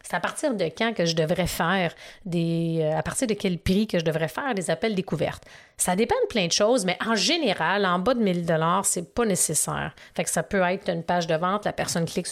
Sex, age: female, 30-49